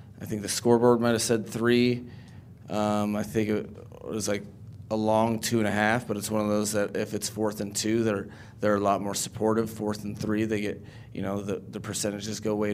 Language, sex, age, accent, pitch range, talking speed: English, male, 30-49, American, 100-110 Hz, 230 wpm